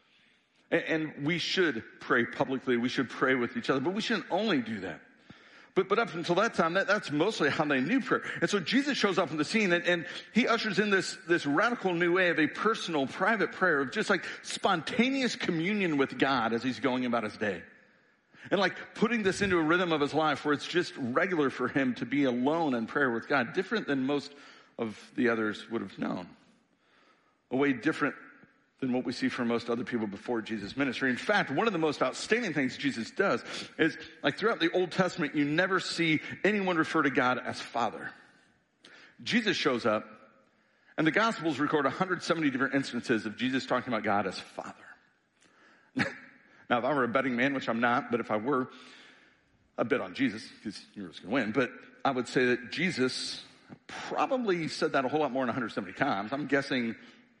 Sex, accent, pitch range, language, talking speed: male, American, 130-185 Hz, English, 205 wpm